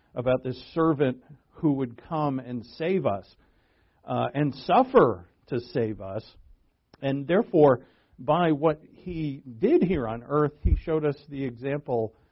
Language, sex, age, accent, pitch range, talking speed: English, male, 50-69, American, 125-160 Hz, 140 wpm